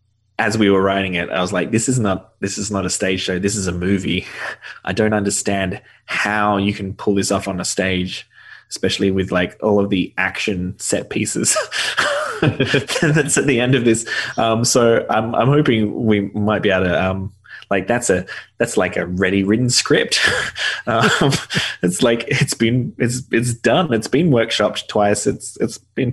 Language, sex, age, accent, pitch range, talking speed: English, male, 20-39, Australian, 95-115 Hz, 190 wpm